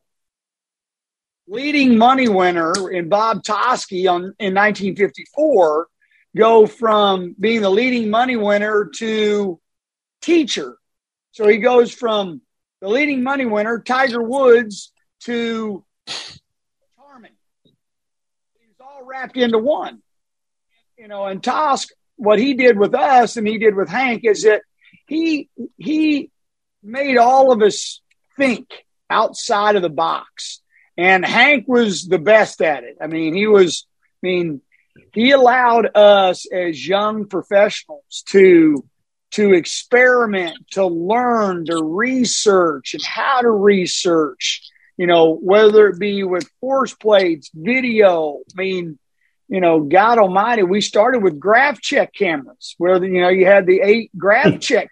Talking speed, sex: 135 wpm, male